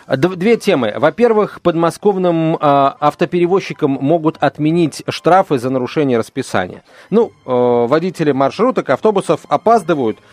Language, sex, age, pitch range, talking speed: Russian, male, 40-59, 130-175 Hz, 105 wpm